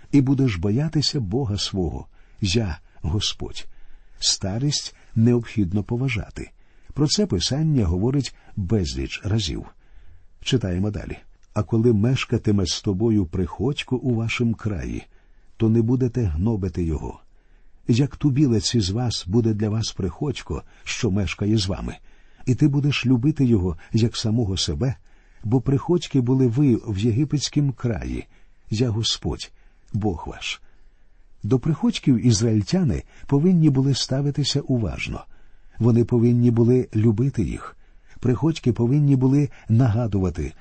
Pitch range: 95-130 Hz